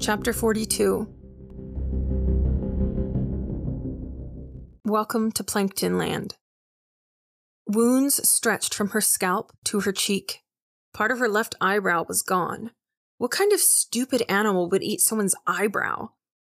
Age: 30-49